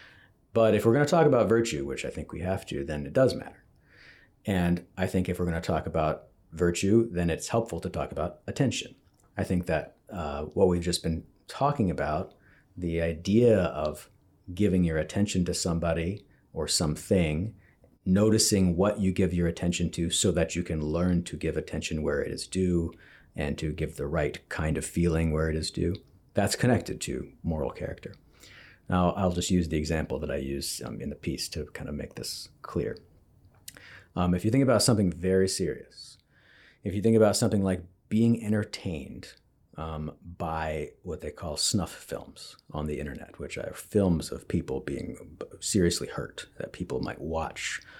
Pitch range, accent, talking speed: 80-100 Hz, American, 185 wpm